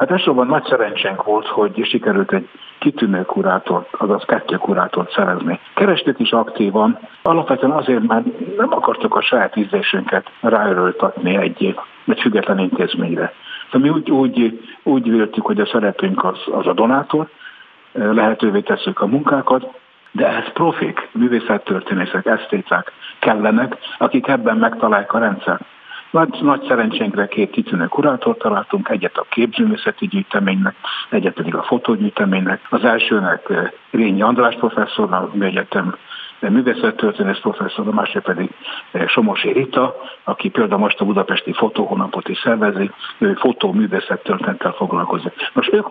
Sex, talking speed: male, 130 wpm